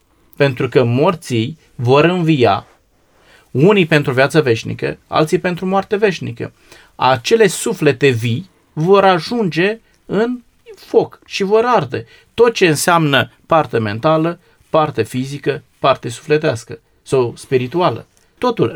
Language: Romanian